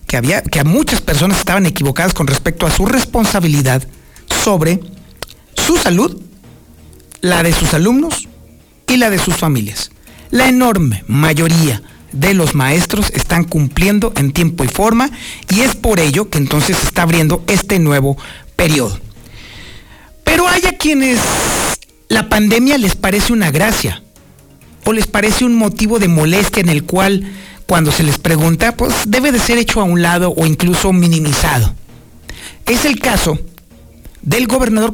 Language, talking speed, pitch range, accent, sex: Spanish, 155 wpm, 150-205 Hz, Mexican, male